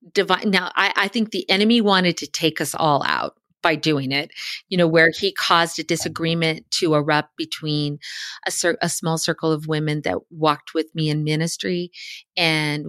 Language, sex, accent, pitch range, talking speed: English, female, American, 160-220 Hz, 180 wpm